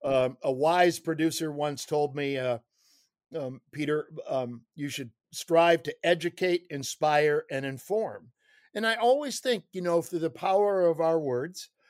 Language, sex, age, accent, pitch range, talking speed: English, male, 60-79, American, 135-180 Hz, 155 wpm